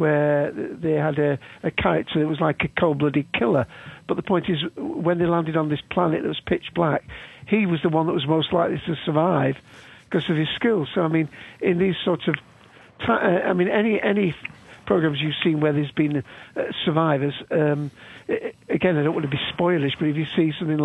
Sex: male